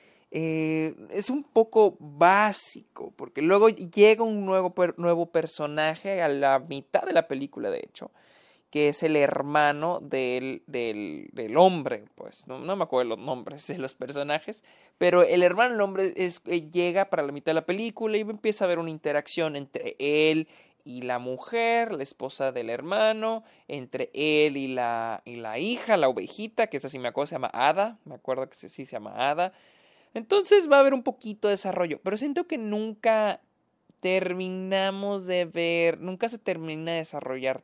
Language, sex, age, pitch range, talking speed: Spanish, male, 30-49, 140-205 Hz, 180 wpm